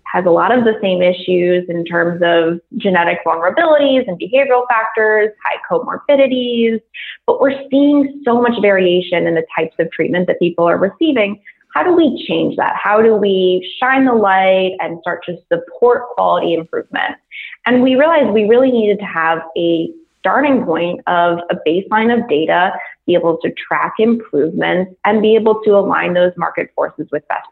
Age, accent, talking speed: 20-39, American, 175 wpm